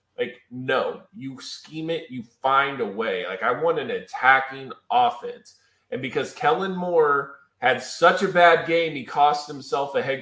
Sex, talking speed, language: male, 170 wpm, English